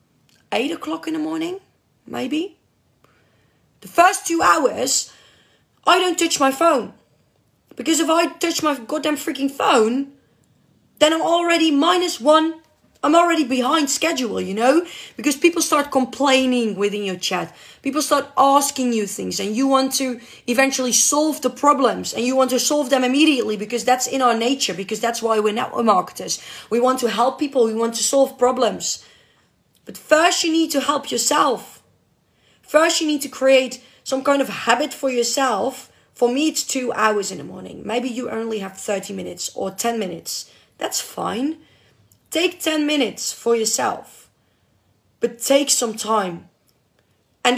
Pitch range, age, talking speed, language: 235-300 Hz, 30-49, 165 wpm, Dutch